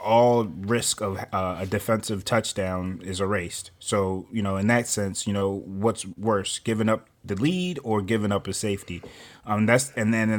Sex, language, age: male, English, 20-39